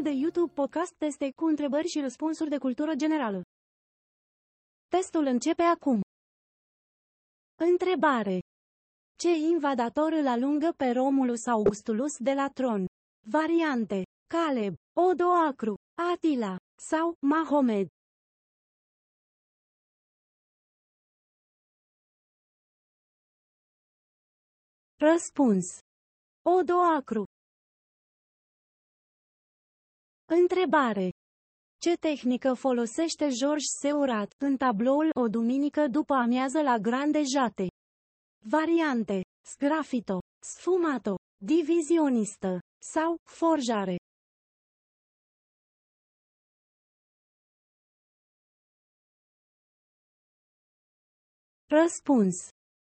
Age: 30-49